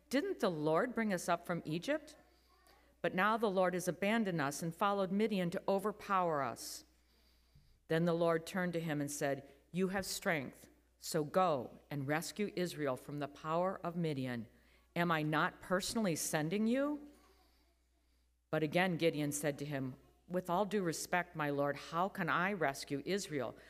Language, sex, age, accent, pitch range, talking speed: English, female, 50-69, American, 145-200 Hz, 165 wpm